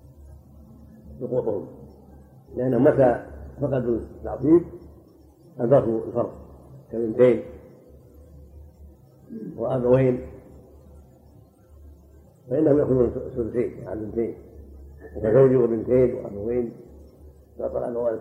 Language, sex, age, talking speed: Arabic, male, 50-69, 70 wpm